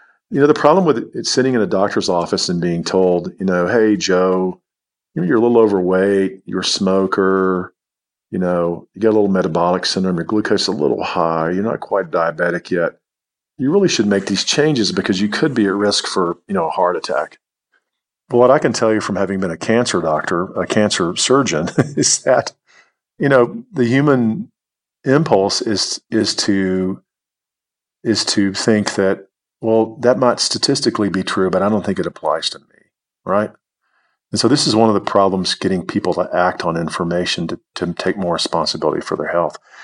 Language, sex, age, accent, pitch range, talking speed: English, male, 40-59, American, 90-110 Hz, 195 wpm